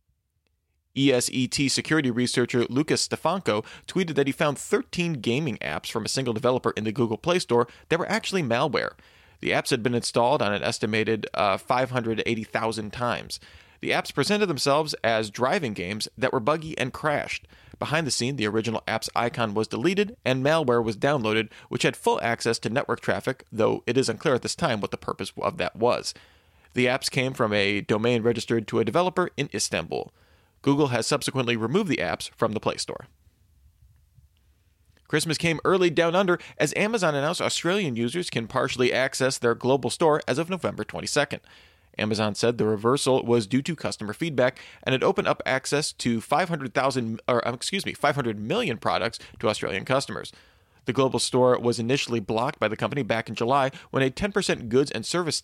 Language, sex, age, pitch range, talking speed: English, male, 30-49, 110-145 Hz, 175 wpm